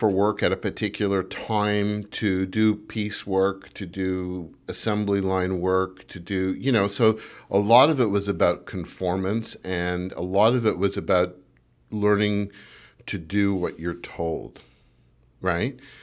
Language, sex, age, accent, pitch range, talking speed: English, male, 50-69, American, 95-115 Hz, 155 wpm